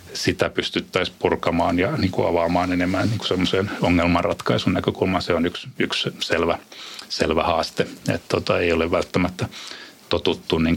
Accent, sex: native, male